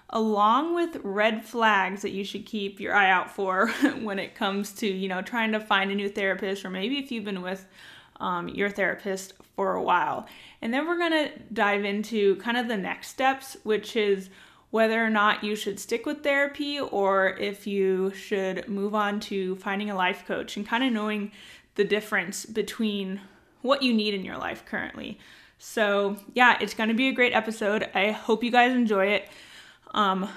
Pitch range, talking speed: 200-230 Hz, 195 wpm